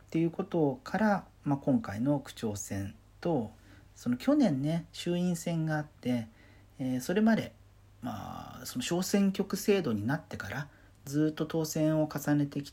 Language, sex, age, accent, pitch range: Japanese, male, 40-59, native, 105-160 Hz